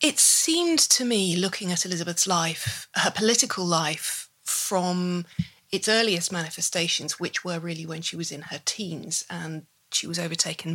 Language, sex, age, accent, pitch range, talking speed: English, female, 30-49, British, 165-210 Hz, 155 wpm